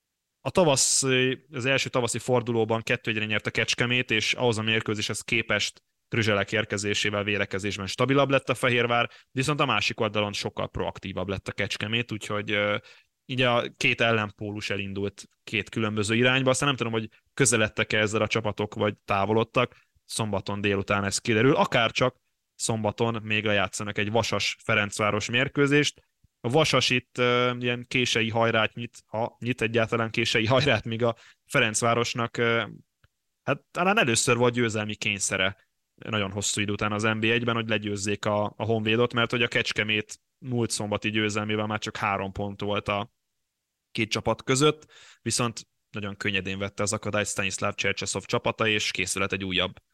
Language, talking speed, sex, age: Hungarian, 155 wpm, male, 20-39